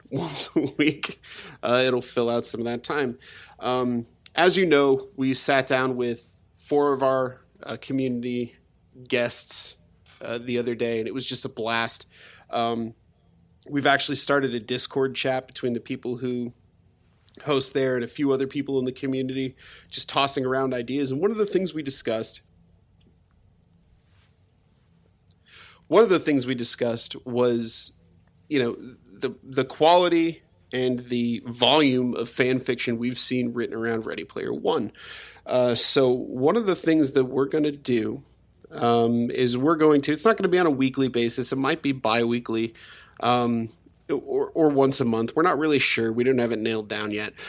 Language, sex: English, male